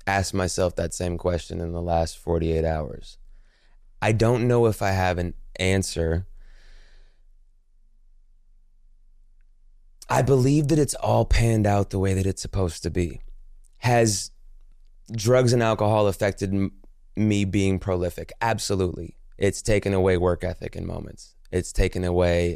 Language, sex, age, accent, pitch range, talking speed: English, male, 20-39, American, 85-100 Hz, 140 wpm